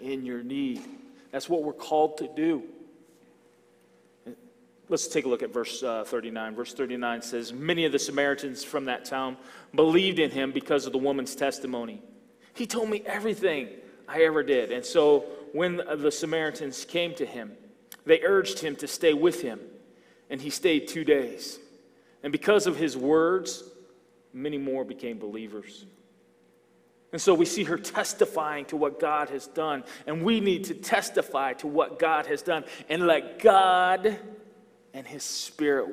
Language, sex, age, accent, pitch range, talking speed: English, male, 40-59, American, 130-195 Hz, 160 wpm